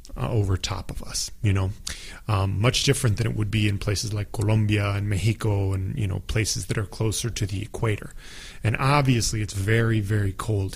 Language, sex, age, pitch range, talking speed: English, male, 30-49, 105-130 Hz, 200 wpm